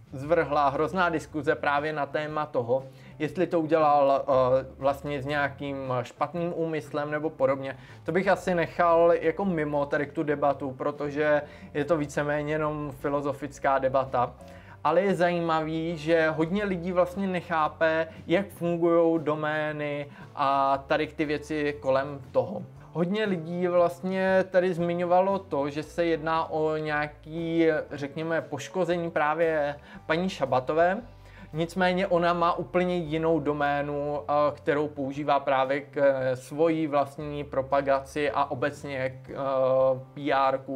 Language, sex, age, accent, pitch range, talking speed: Czech, male, 20-39, native, 140-165 Hz, 125 wpm